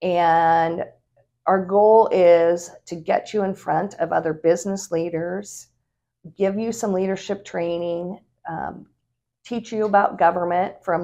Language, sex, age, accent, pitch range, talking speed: English, female, 50-69, American, 150-175 Hz, 130 wpm